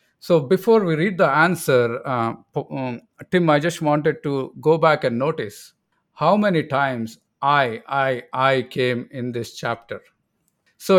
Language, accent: English, Indian